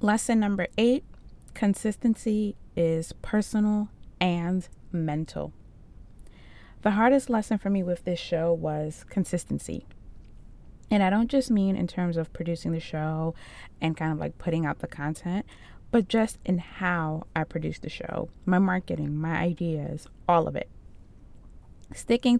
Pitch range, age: 160-205 Hz, 20-39